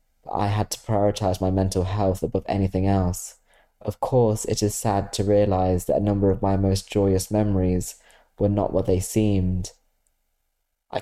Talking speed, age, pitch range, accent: 170 wpm, 20-39, 90-105 Hz, British